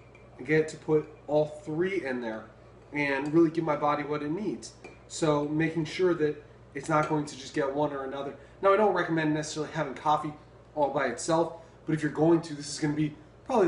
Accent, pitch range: American, 150-170 Hz